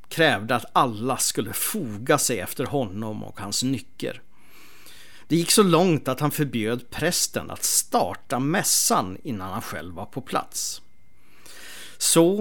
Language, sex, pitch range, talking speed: English, male, 115-155 Hz, 140 wpm